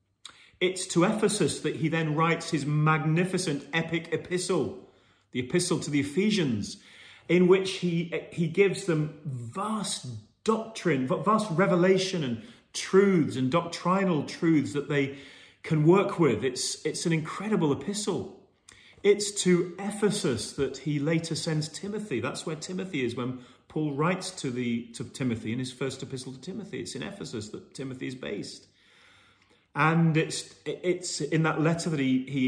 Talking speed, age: 150 wpm, 40-59